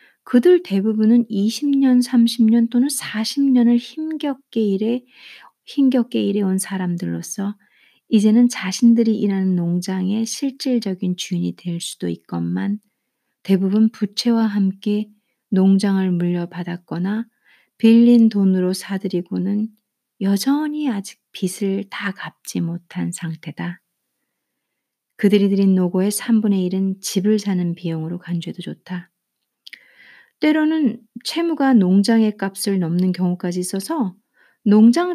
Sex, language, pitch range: female, Korean, 185-240 Hz